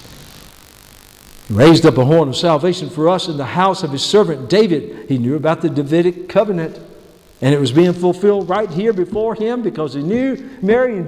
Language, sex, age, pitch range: English, male, 60-79, 155-195 Hz